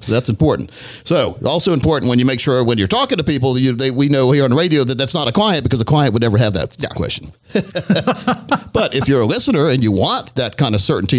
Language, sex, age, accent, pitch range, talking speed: English, male, 50-69, American, 125-170 Hz, 245 wpm